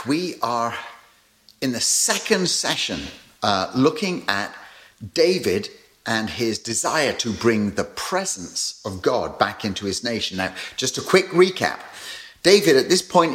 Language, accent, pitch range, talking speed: English, British, 105-170 Hz, 145 wpm